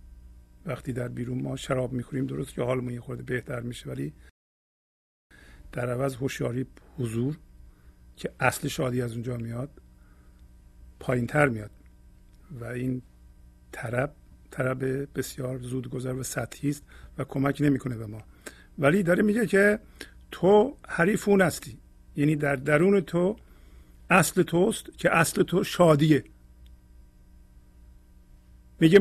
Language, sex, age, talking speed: Persian, male, 50-69, 120 wpm